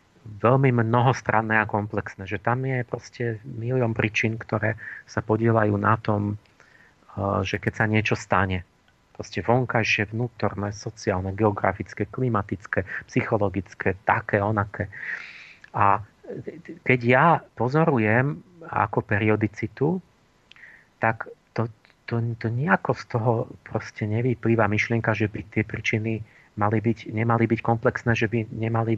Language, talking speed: Slovak, 120 wpm